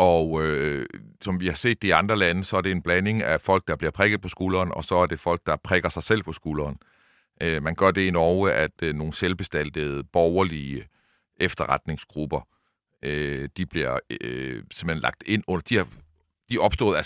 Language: Danish